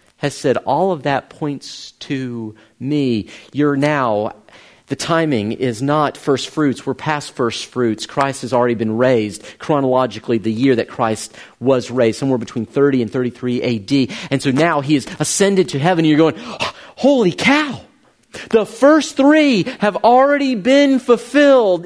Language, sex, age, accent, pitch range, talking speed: English, male, 40-59, American, 130-205 Hz, 155 wpm